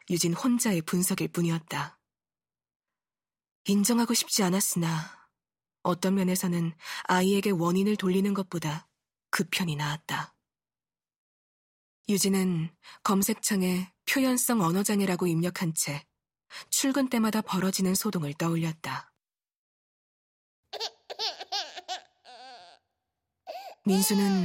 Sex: female